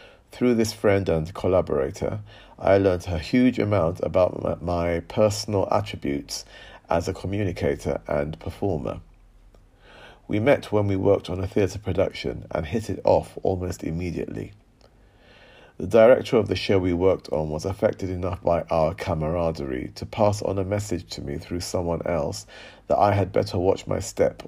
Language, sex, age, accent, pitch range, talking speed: English, male, 40-59, British, 85-105 Hz, 160 wpm